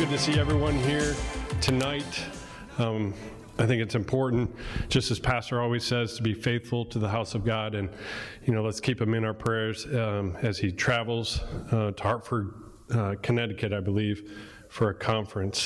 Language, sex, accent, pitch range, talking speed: English, male, American, 105-125 Hz, 180 wpm